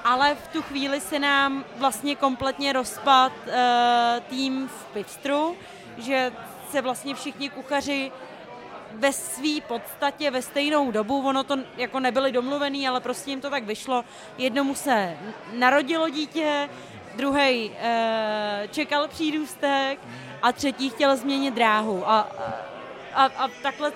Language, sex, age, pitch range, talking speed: Czech, female, 30-49, 255-290 Hz, 130 wpm